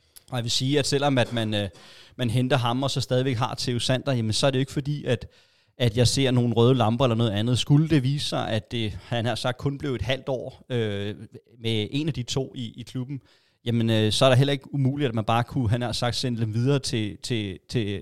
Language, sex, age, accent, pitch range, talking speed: Danish, male, 30-49, native, 115-135 Hz, 255 wpm